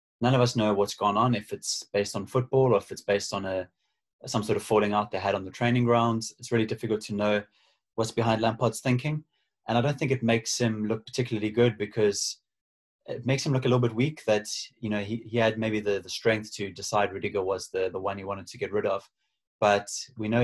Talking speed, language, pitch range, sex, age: 245 wpm, English, 100-115 Hz, male, 20-39